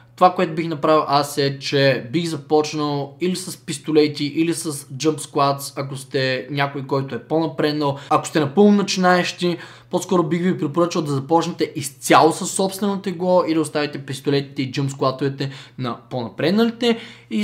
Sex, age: male, 20-39